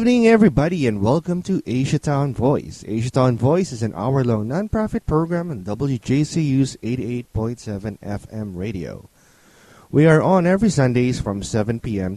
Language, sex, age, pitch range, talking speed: English, male, 20-39, 100-150 Hz, 145 wpm